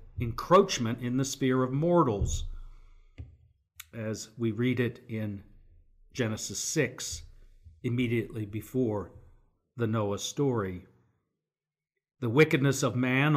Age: 50-69